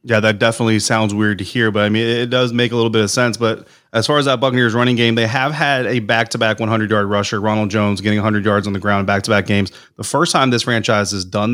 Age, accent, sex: 30-49, American, male